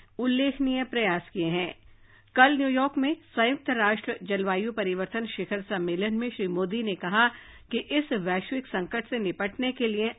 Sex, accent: female, native